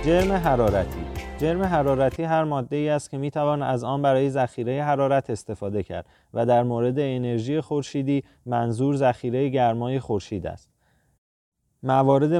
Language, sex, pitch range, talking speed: Persian, male, 120-140 Hz, 140 wpm